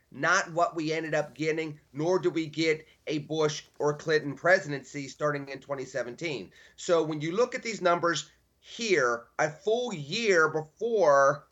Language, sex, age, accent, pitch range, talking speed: English, male, 30-49, American, 145-180 Hz, 155 wpm